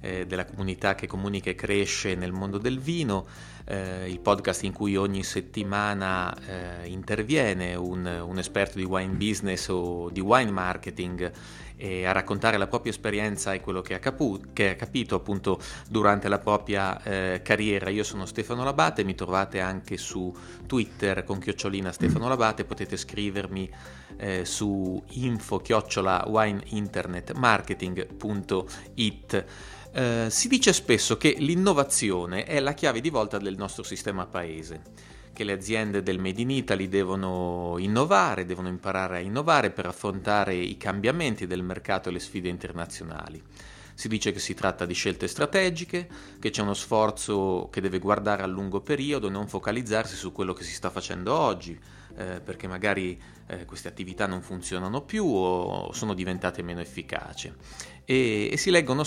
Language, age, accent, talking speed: Italian, 30-49, native, 155 wpm